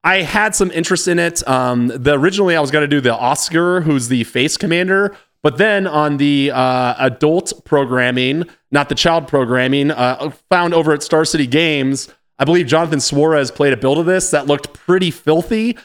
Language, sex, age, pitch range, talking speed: English, male, 30-49, 135-165 Hz, 190 wpm